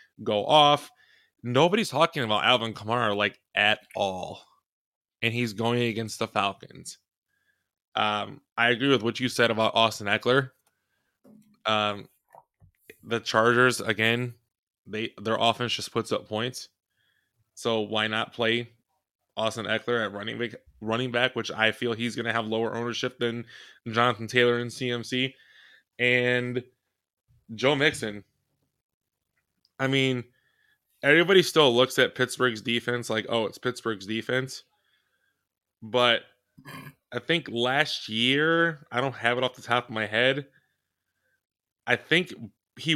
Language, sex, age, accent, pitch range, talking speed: English, male, 20-39, American, 110-130 Hz, 135 wpm